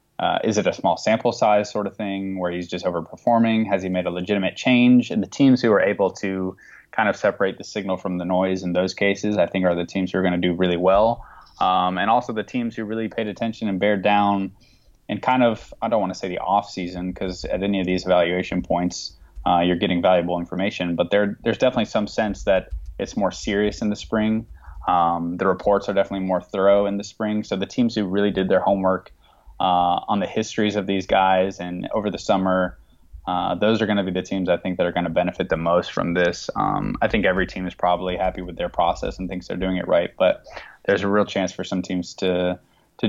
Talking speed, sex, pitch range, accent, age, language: 240 wpm, male, 90-105 Hz, American, 20-39, English